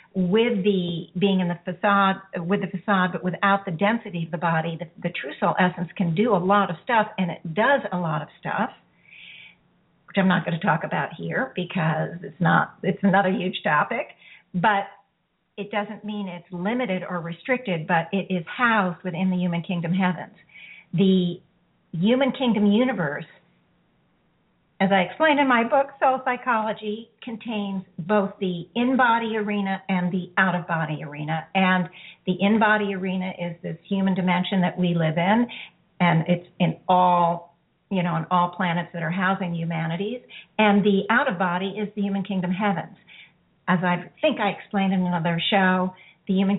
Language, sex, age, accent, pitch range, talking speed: English, female, 50-69, American, 175-205 Hz, 165 wpm